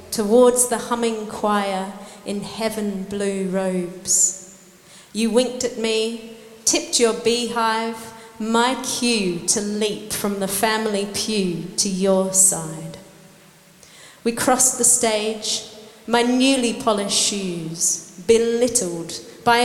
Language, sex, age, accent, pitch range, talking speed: English, female, 30-49, British, 190-225 Hz, 105 wpm